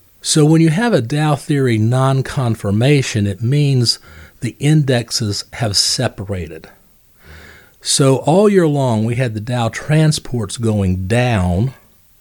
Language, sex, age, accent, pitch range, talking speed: English, male, 40-59, American, 100-130 Hz, 125 wpm